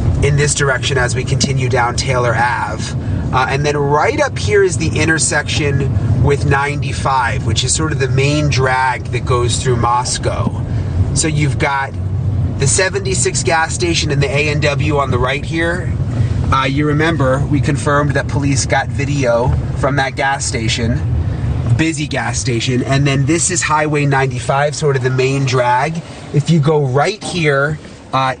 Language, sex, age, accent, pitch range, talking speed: English, male, 30-49, American, 125-150 Hz, 165 wpm